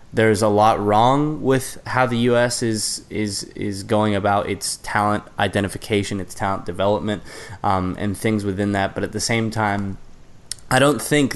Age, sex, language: 10-29, male, English